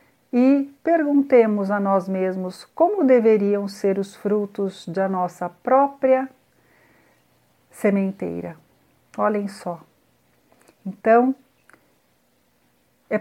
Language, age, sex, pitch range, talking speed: Portuguese, 50-69, female, 195-265 Hz, 80 wpm